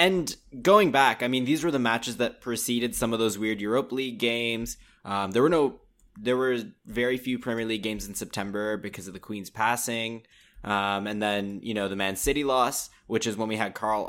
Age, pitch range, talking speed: 10-29, 100-120 Hz, 210 wpm